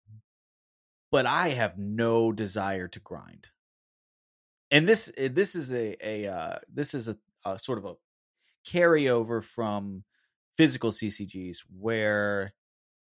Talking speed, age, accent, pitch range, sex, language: 120 wpm, 20-39, American, 100-135 Hz, male, English